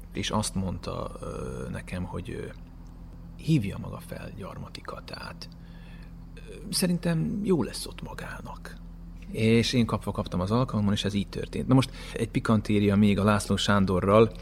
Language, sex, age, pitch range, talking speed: Hungarian, male, 30-49, 95-150 Hz, 140 wpm